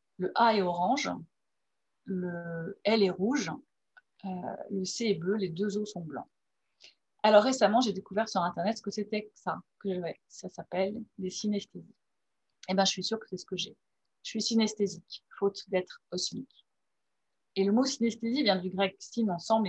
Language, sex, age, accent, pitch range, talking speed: French, female, 30-49, French, 190-235 Hz, 180 wpm